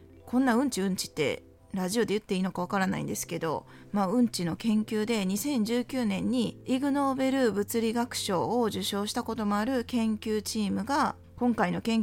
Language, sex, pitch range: Japanese, female, 190-255 Hz